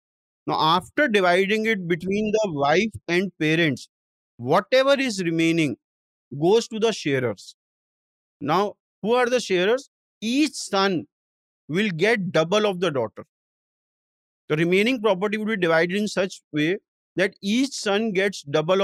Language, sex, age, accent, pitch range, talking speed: English, male, 50-69, Indian, 165-220 Hz, 135 wpm